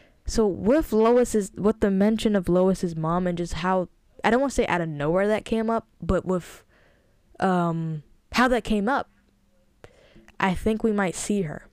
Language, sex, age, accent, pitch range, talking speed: English, female, 10-29, American, 175-230 Hz, 185 wpm